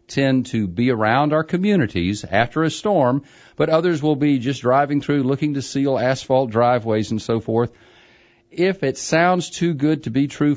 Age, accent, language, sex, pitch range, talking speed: 40-59, American, English, male, 115-145 Hz, 180 wpm